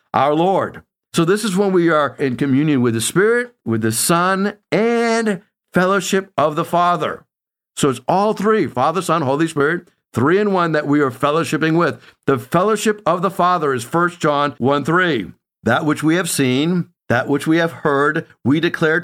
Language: English